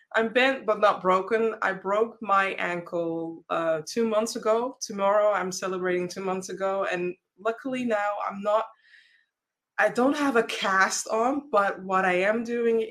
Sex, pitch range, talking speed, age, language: female, 175-215 Hz, 165 wpm, 20-39, English